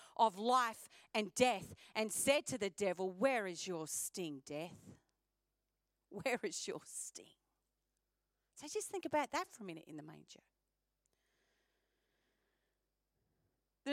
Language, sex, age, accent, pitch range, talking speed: English, female, 40-59, Australian, 205-295 Hz, 130 wpm